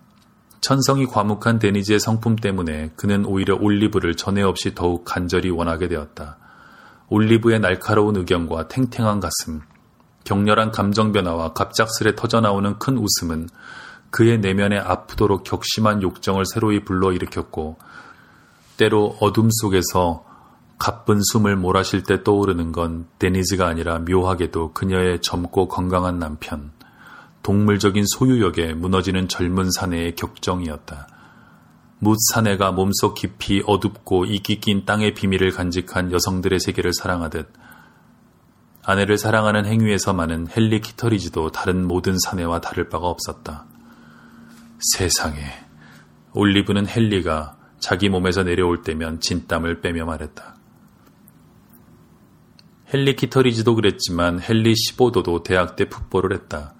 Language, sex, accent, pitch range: Korean, male, native, 85-105 Hz